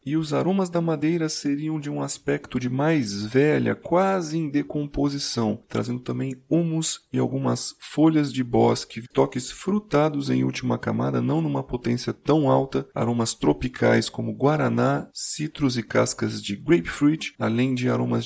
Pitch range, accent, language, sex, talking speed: 115-150 Hz, Brazilian, Portuguese, male, 150 wpm